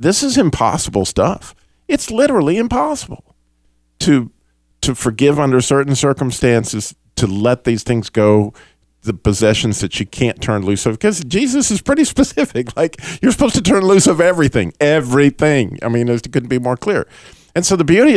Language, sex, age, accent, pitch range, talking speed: English, male, 50-69, American, 95-145 Hz, 170 wpm